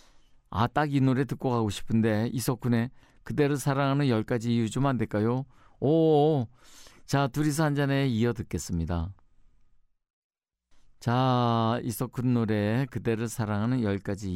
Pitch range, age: 105-135 Hz, 50-69